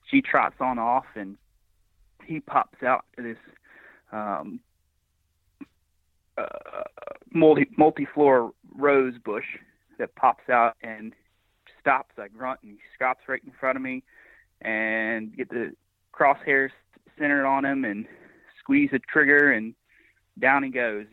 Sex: male